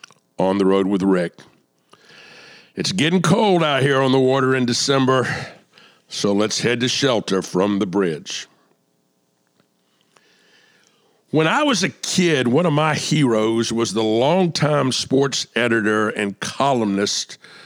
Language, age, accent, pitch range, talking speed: English, 60-79, American, 105-140 Hz, 135 wpm